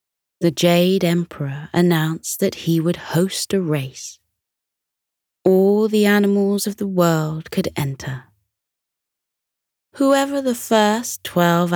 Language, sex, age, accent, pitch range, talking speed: English, female, 20-39, British, 145-190 Hz, 110 wpm